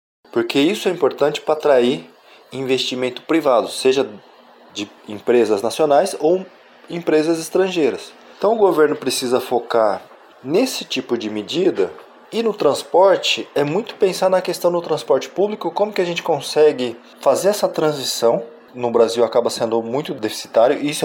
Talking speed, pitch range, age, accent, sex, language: 145 wpm, 125-175 Hz, 20-39, Brazilian, male, Portuguese